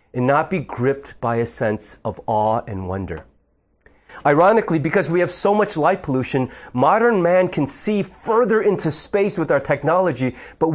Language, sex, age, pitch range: English, male, 30-49, 125-185 Hz